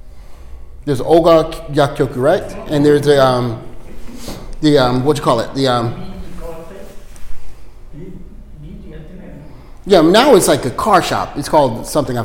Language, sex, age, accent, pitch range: Japanese, male, 30-49, American, 115-175 Hz